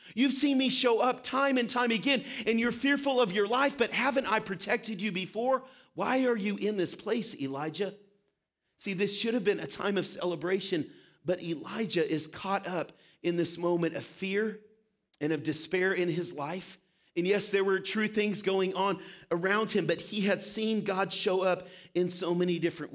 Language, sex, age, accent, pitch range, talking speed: English, male, 40-59, American, 180-235 Hz, 195 wpm